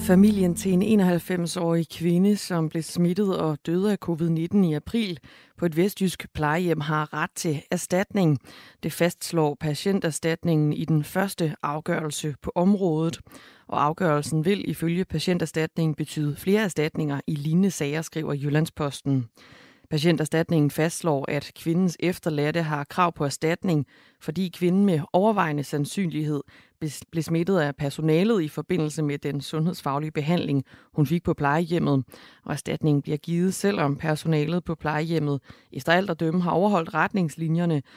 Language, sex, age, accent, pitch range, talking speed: Danish, female, 30-49, native, 150-175 Hz, 135 wpm